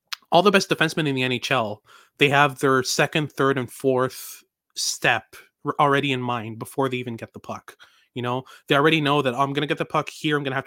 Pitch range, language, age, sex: 125-150 Hz, English, 20-39, male